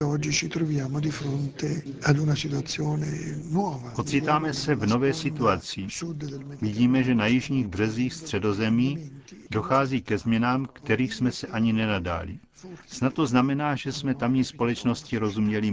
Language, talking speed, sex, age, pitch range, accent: Czech, 105 wpm, male, 50-69, 105-140 Hz, native